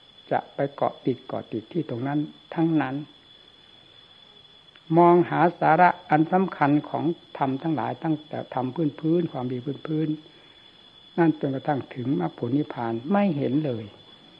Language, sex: Thai, male